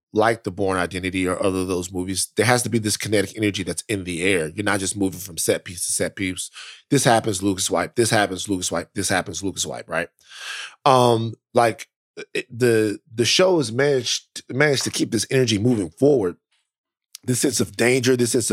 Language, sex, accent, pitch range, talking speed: English, male, American, 105-135 Hz, 205 wpm